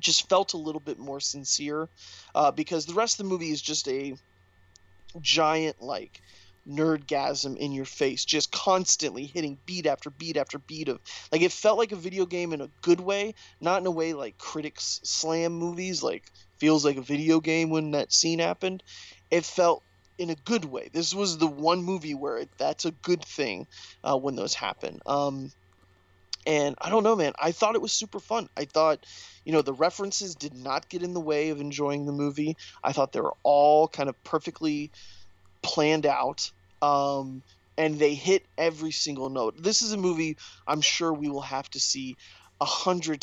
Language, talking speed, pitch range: English, 195 wpm, 135-170 Hz